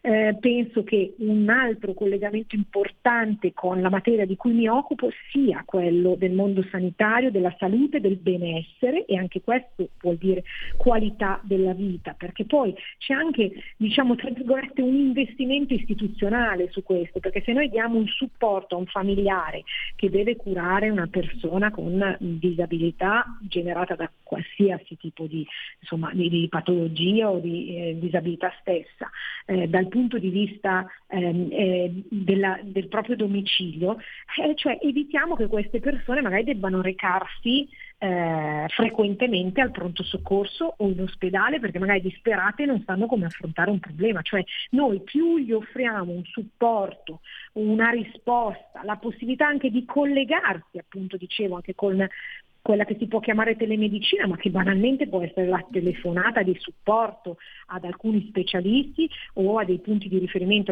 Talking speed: 150 wpm